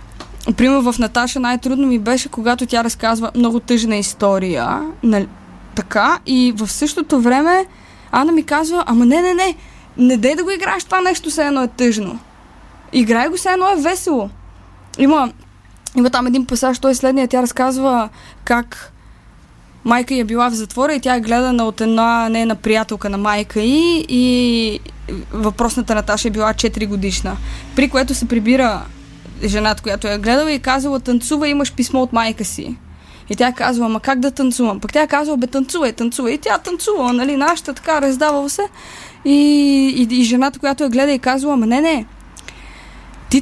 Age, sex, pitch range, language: 20-39, female, 230-280 Hz, Bulgarian